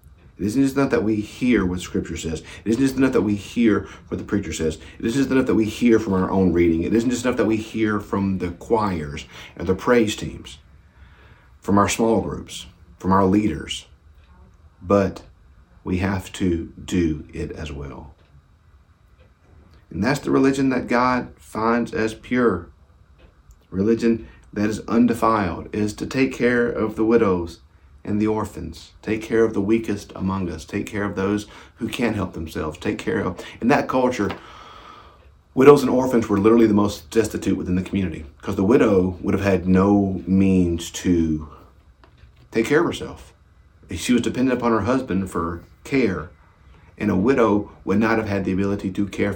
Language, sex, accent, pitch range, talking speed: English, male, American, 85-110 Hz, 180 wpm